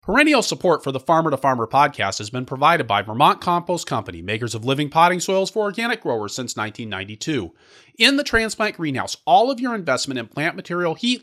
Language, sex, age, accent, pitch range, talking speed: English, male, 30-49, American, 130-205 Hz, 200 wpm